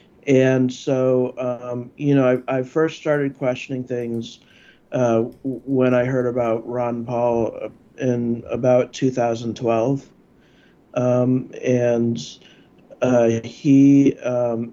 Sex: male